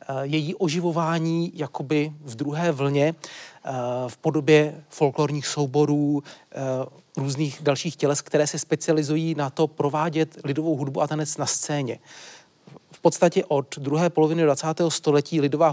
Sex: male